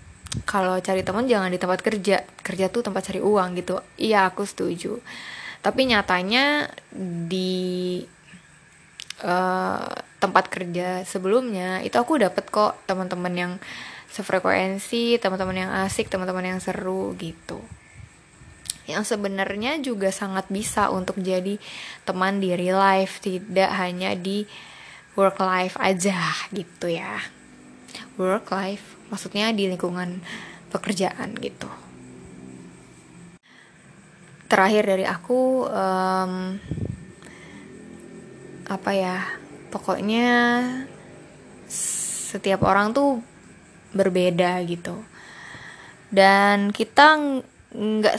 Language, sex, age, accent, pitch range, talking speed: Indonesian, female, 10-29, native, 185-205 Hz, 95 wpm